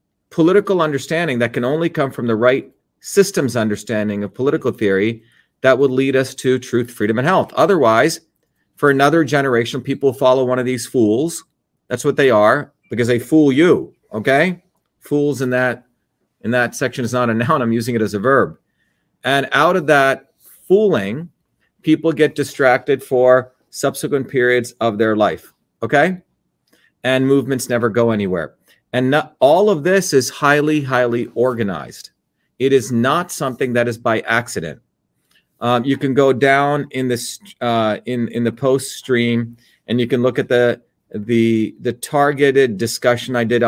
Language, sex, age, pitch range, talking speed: English, male, 40-59, 120-140 Hz, 165 wpm